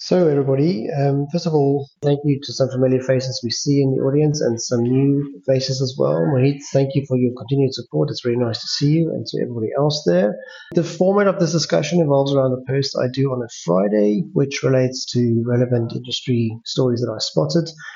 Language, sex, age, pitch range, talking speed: English, male, 30-49, 120-145 Hz, 215 wpm